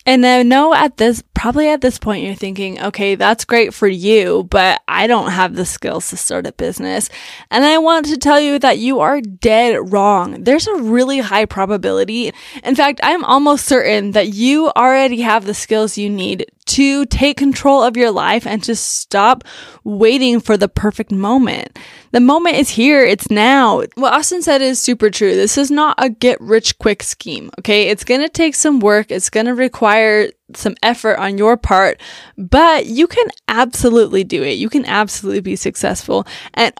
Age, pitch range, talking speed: 10-29, 215-275 Hz, 190 wpm